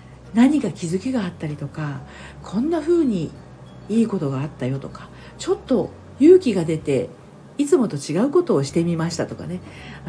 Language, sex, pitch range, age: Japanese, female, 155-215 Hz, 40-59